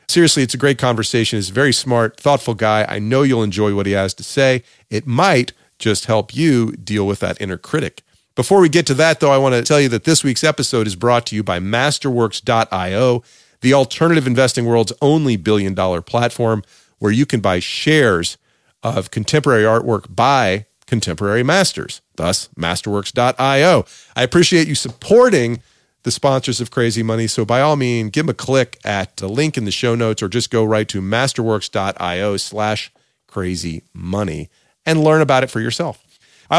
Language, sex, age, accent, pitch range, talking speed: English, male, 40-59, American, 110-140 Hz, 180 wpm